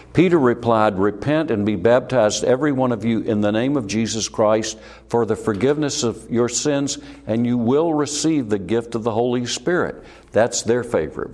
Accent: American